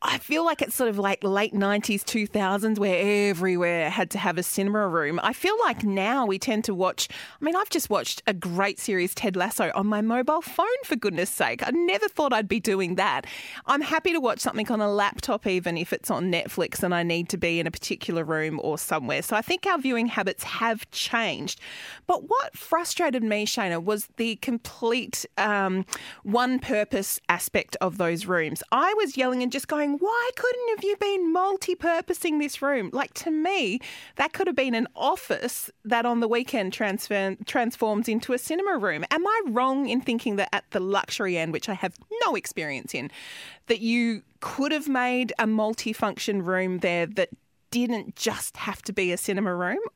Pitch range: 185-260 Hz